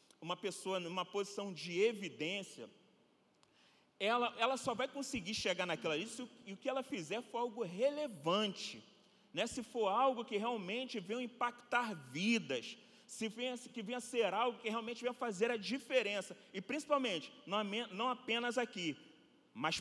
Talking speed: 160 wpm